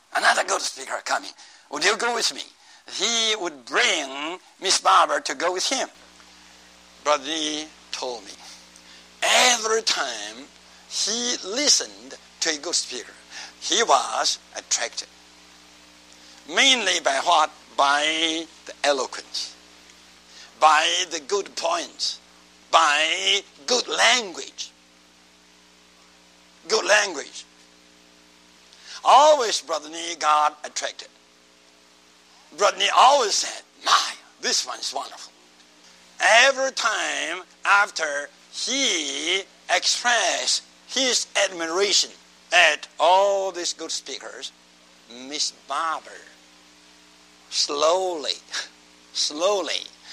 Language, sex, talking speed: English, male, 90 wpm